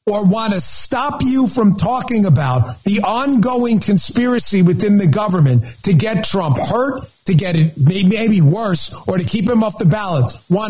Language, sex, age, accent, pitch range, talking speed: English, male, 40-59, American, 155-215 Hz, 175 wpm